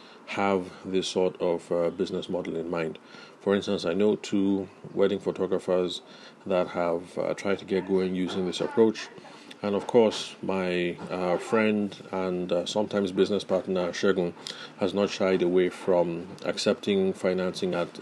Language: English